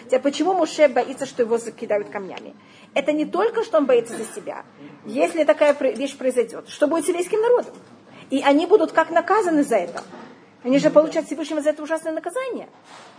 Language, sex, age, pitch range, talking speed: Russian, female, 40-59, 250-310 Hz, 175 wpm